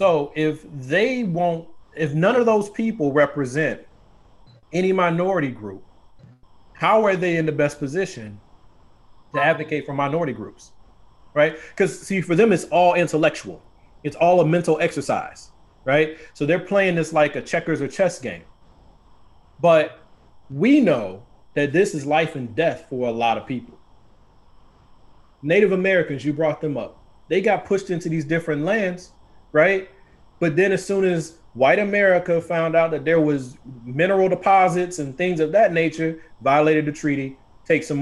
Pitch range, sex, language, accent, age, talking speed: 140-180 Hz, male, English, American, 30-49, 160 wpm